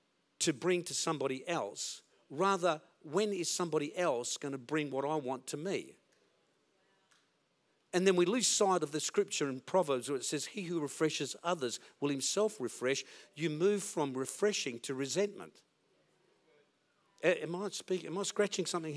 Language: English